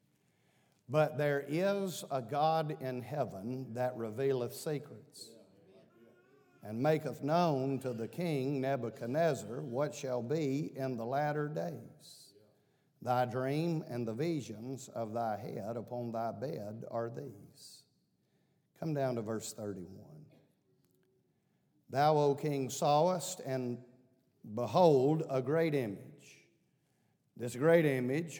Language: English